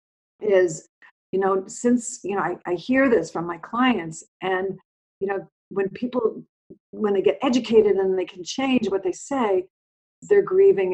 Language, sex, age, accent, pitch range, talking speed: English, female, 50-69, American, 175-245 Hz, 170 wpm